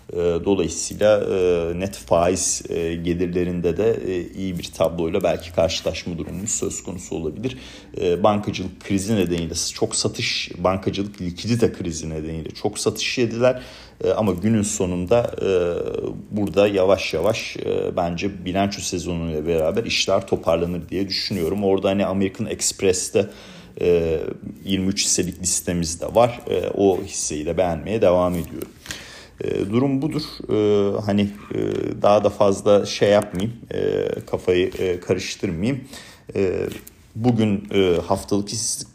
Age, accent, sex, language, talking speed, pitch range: 40-59, native, male, Turkish, 105 wpm, 90-110 Hz